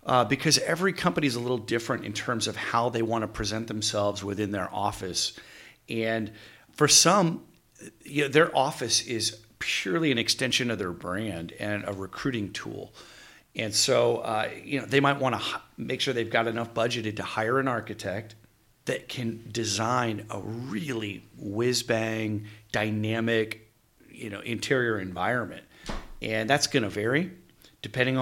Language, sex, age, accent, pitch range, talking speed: English, male, 40-59, American, 110-130 Hz, 160 wpm